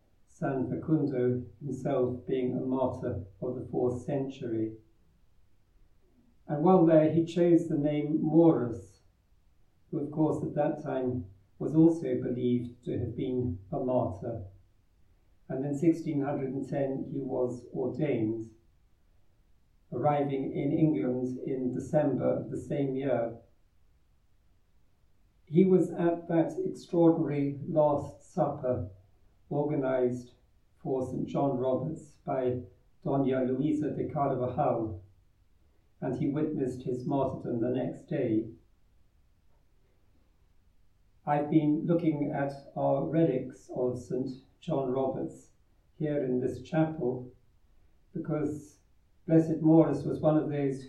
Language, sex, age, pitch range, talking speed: English, male, 50-69, 105-150 Hz, 110 wpm